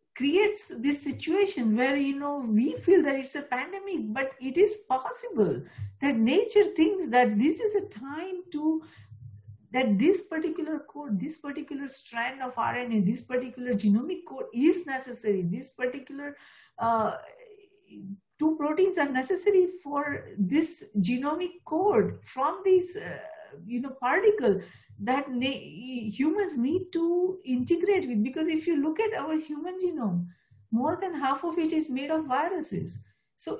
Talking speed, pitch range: 145 wpm, 245-345 Hz